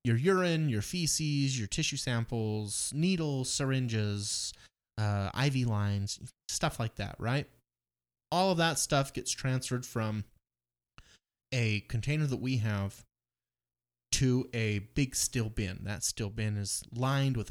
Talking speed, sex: 135 wpm, male